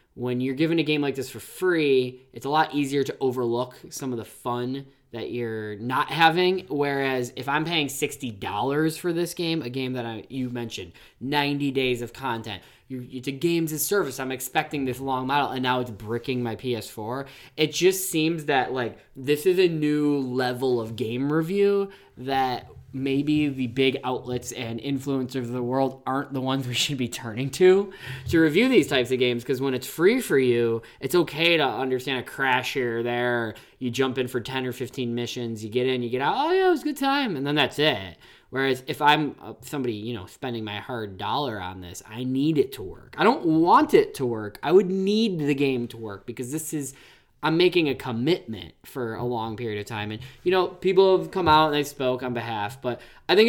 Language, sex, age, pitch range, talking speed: English, male, 10-29, 125-160 Hz, 215 wpm